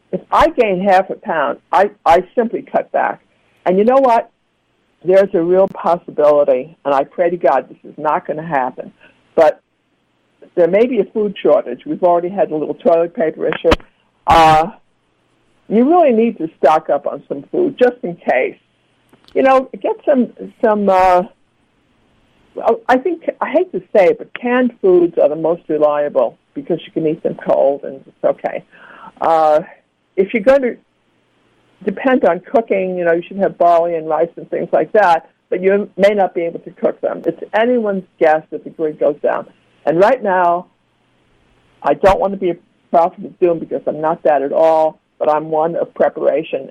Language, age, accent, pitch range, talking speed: English, 60-79, American, 160-225 Hz, 190 wpm